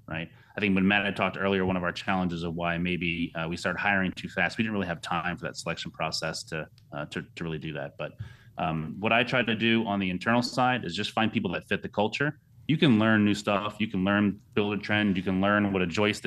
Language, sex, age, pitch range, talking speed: English, male, 30-49, 95-120 Hz, 270 wpm